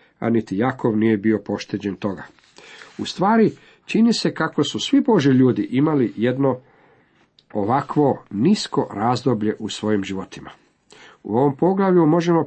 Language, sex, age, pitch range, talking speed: Croatian, male, 50-69, 115-150 Hz, 135 wpm